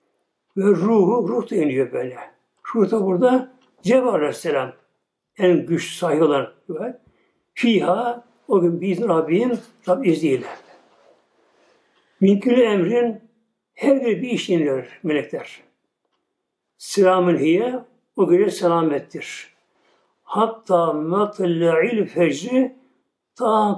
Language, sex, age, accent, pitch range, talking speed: Turkish, male, 60-79, native, 180-240 Hz, 95 wpm